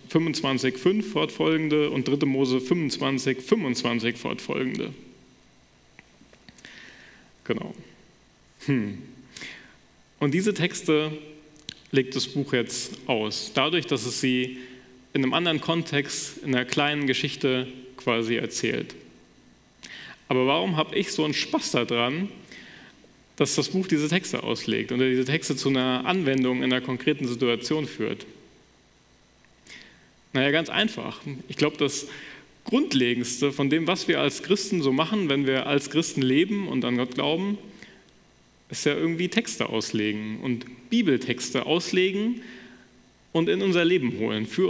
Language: German